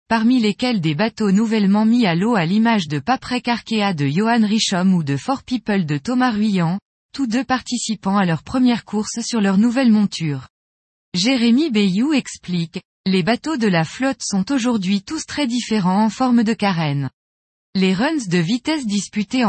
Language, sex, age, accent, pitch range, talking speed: French, female, 20-39, French, 180-240 Hz, 170 wpm